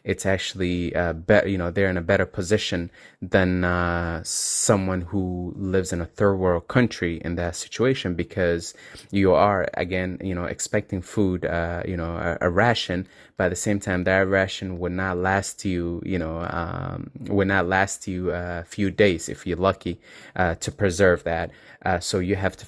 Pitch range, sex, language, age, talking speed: 85-95 Hz, male, English, 20-39, 185 wpm